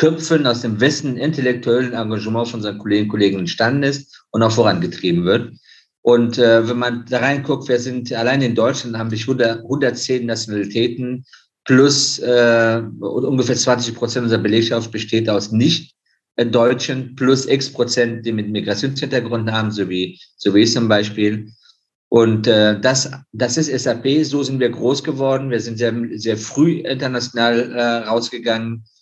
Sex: male